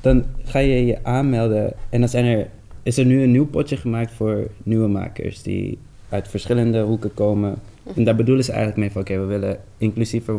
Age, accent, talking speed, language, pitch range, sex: 20-39, Dutch, 190 wpm, English, 100-115 Hz, male